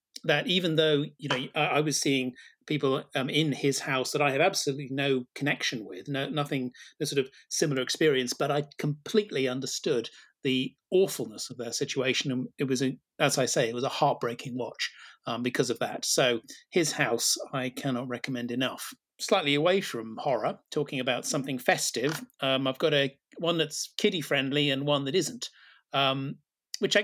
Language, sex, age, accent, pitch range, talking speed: English, male, 40-59, British, 130-150 Hz, 180 wpm